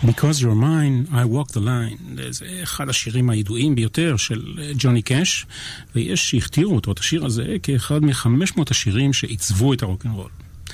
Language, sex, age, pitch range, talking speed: Hebrew, male, 40-59, 105-140 Hz, 150 wpm